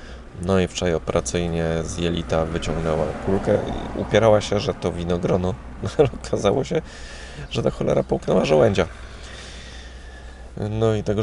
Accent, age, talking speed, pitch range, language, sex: native, 20-39, 135 wpm, 65-90 Hz, Polish, male